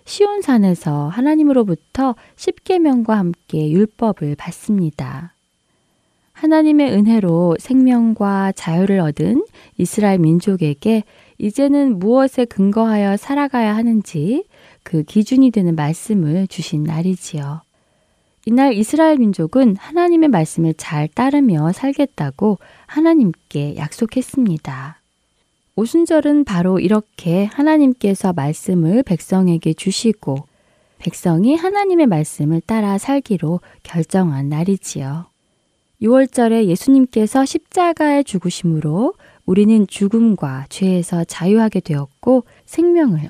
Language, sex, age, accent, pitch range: Korean, female, 20-39, native, 165-255 Hz